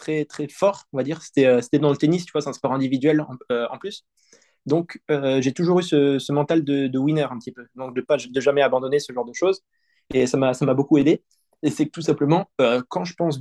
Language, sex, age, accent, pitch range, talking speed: French, male, 20-39, French, 135-175 Hz, 280 wpm